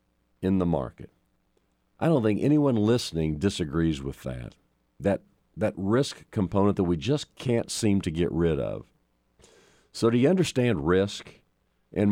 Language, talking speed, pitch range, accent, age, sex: English, 150 wpm, 80-125 Hz, American, 50-69, male